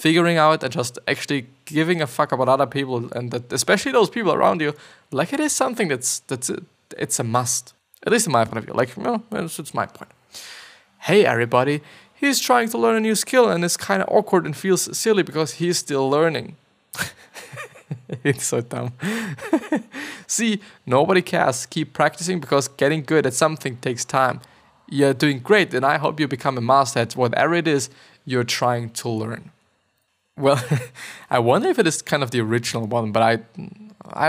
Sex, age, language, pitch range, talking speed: male, 20-39, English, 125-170 Hz, 190 wpm